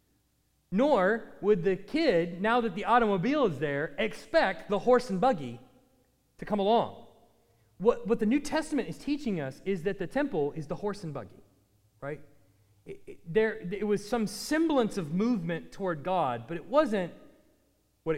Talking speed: 170 wpm